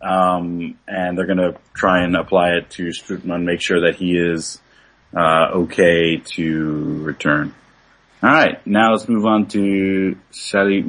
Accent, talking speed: American, 155 wpm